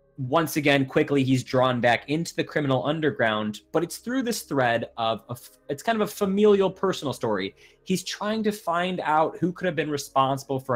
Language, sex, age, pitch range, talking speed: English, male, 30-49, 130-175 Hz, 190 wpm